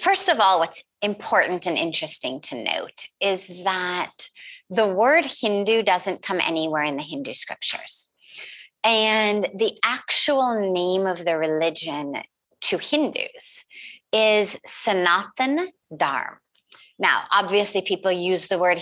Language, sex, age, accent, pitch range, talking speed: English, female, 30-49, American, 180-245 Hz, 125 wpm